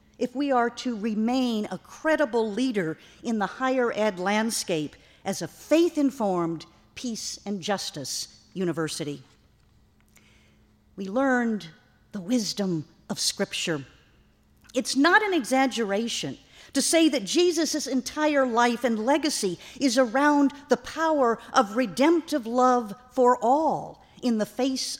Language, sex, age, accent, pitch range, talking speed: English, female, 50-69, American, 200-270 Hz, 120 wpm